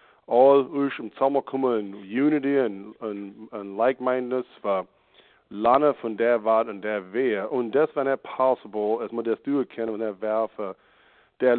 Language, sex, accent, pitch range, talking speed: English, male, German, 105-135 Hz, 170 wpm